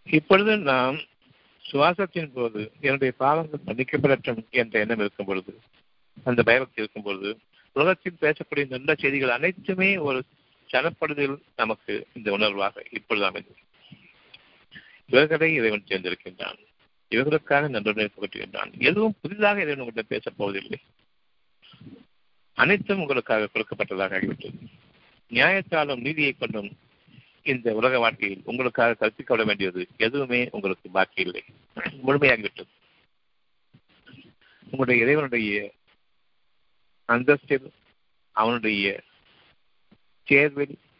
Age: 50-69